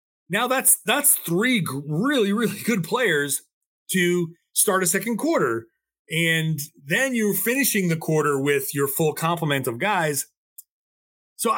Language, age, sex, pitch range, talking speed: English, 30-49, male, 145-205 Hz, 135 wpm